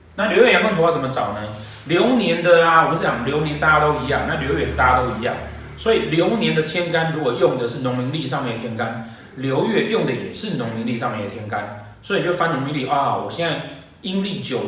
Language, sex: Chinese, male